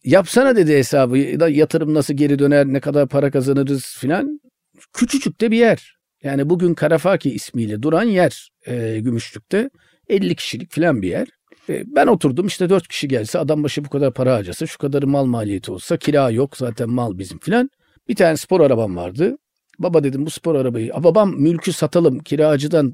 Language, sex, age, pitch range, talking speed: Turkish, male, 50-69, 135-185 Hz, 180 wpm